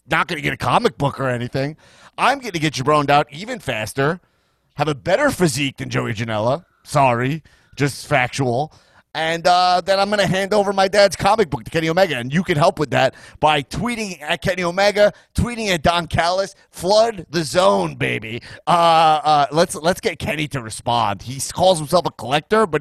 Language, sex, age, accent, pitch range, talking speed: English, male, 30-49, American, 125-185 Hz, 195 wpm